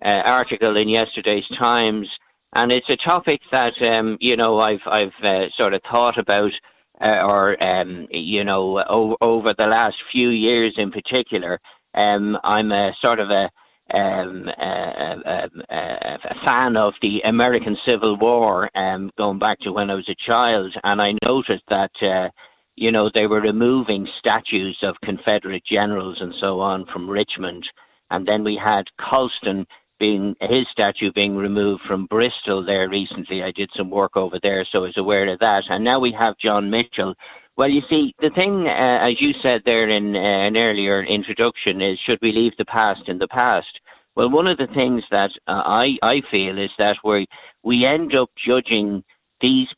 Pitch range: 100-115 Hz